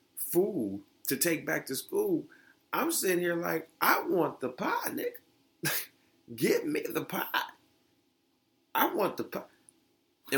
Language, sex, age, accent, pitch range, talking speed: English, male, 30-49, American, 105-170 Hz, 135 wpm